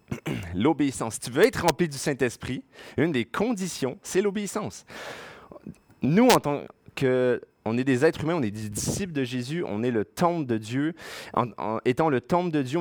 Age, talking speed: 30-49, 190 wpm